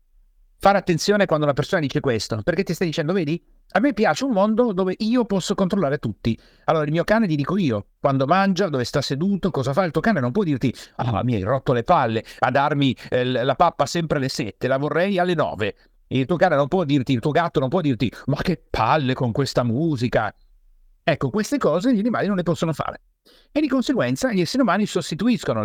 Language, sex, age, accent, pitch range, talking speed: Italian, male, 50-69, native, 125-195 Hz, 220 wpm